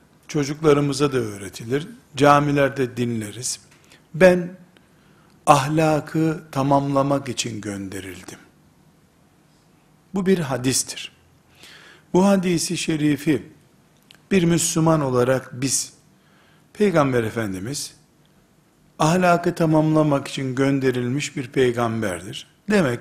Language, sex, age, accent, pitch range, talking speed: Turkish, male, 60-79, native, 125-165 Hz, 75 wpm